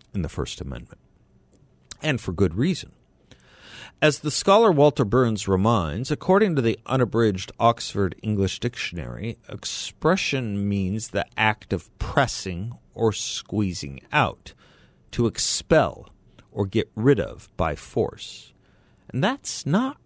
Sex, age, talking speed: male, 50-69, 125 wpm